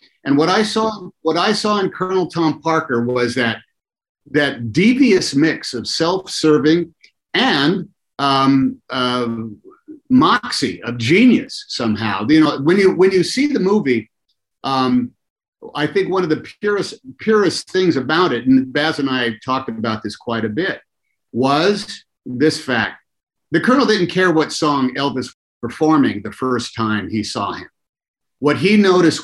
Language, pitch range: English, 130-190 Hz